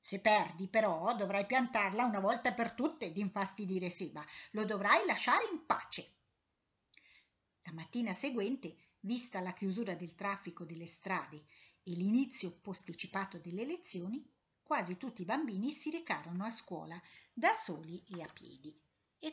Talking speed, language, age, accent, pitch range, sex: 140 wpm, Italian, 50-69, native, 170-230 Hz, female